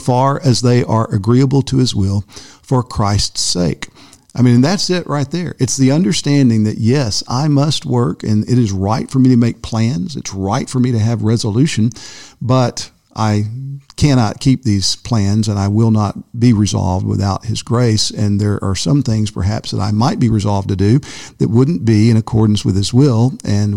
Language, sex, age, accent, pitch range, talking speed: English, male, 50-69, American, 100-130 Hz, 195 wpm